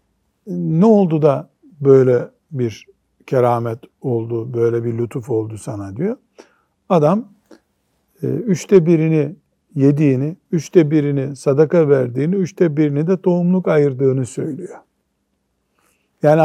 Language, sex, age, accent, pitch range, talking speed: Turkish, male, 60-79, native, 125-175 Hz, 100 wpm